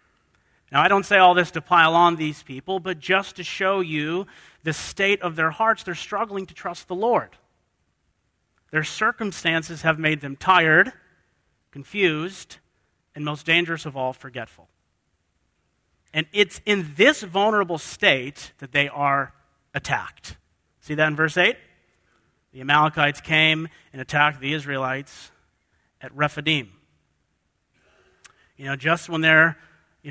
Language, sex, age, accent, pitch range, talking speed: English, male, 40-59, American, 135-170 Hz, 140 wpm